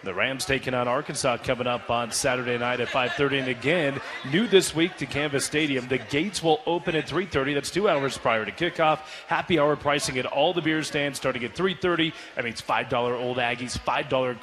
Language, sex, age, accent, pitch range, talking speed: English, male, 30-49, American, 125-150 Hz, 210 wpm